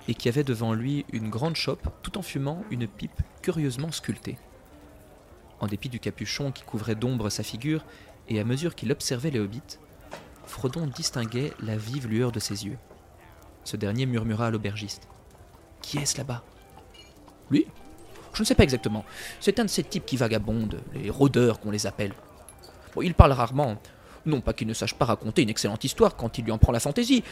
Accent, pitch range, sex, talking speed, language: French, 110-150 Hz, male, 200 wpm, French